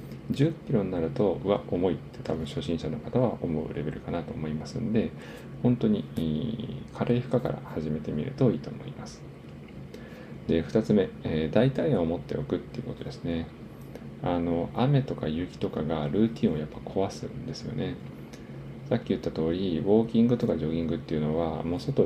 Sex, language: male, Japanese